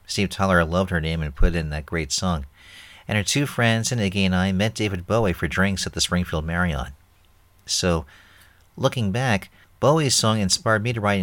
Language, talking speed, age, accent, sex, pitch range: English, 205 wpm, 50-69, American, male, 90-110 Hz